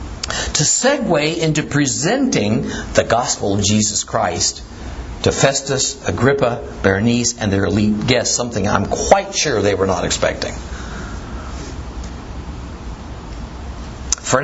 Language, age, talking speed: English, 60-79, 110 wpm